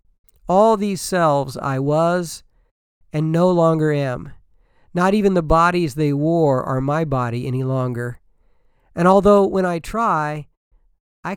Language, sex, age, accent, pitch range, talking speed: English, male, 50-69, American, 120-180 Hz, 135 wpm